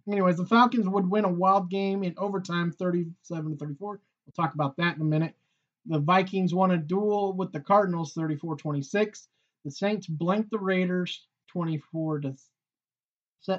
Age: 30-49